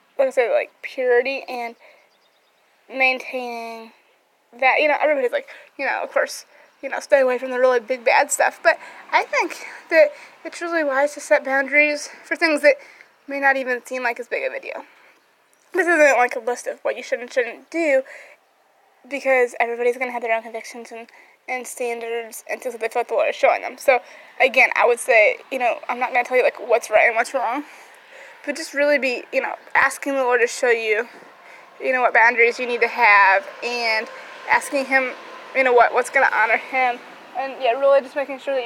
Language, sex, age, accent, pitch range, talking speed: English, female, 20-39, American, 240-300 Hz, 215 wpm